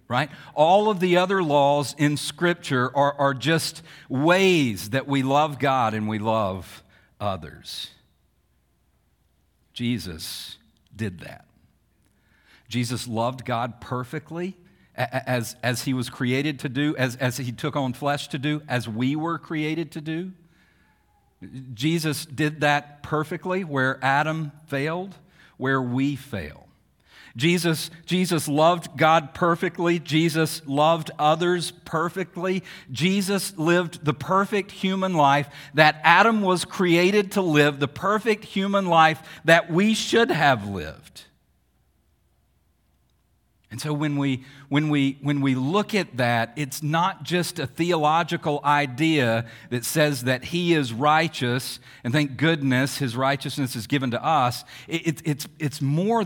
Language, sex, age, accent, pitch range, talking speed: English, male, 50-69, American, 125-170 Hz, 135 wpm